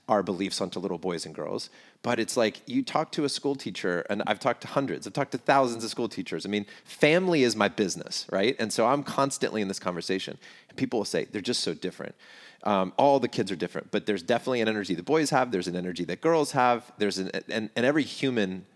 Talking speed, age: 245 wpm, 30-49